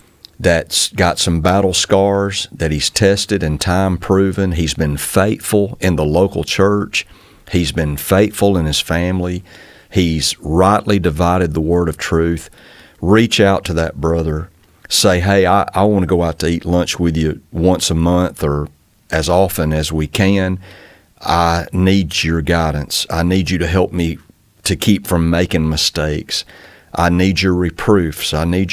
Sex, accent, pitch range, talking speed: male, American, 80-95 Hz, 160 wpm